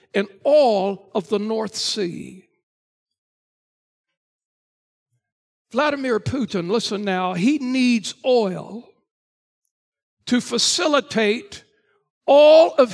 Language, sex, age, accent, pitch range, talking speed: English, male, 60-79, American, 180-240 Hz, 80 wpm